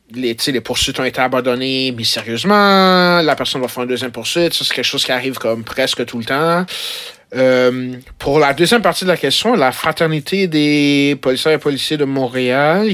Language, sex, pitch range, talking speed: French, male, 125-165 Hz, 195 wpm